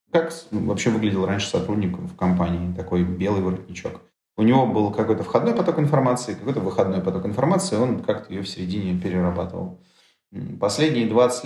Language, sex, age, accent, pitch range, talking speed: Russian, male, 30-49, native, 95-115 Hz, 150 wpm